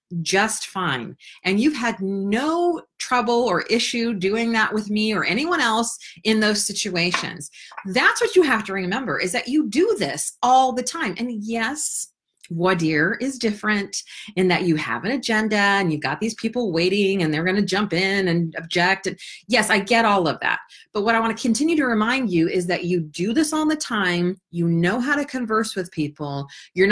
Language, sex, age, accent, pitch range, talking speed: English, female, 30-49, American, 180-255 Hz, 200 wpm